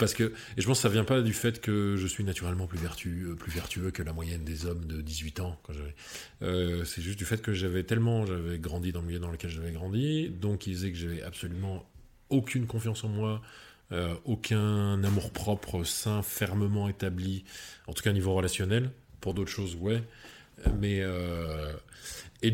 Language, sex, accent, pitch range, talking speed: French, male, French, 90-110 Hz, 205 wpm